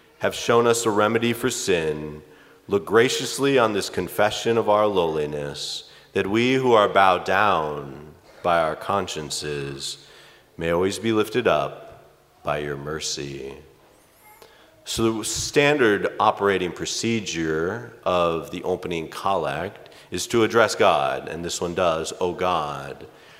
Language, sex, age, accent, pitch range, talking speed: English, male, 40-59, American, 80-115 Hz, 130 wpm